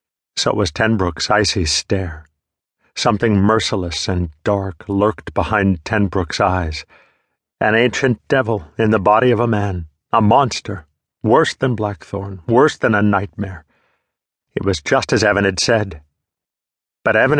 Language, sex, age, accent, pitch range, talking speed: English, male, 50-69, American, 95-115 Hz, 140 wpm